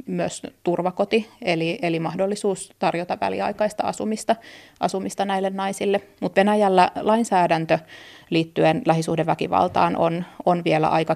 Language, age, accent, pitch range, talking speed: Finnish, 30-49, native, 160-195 Hz, 110 wpm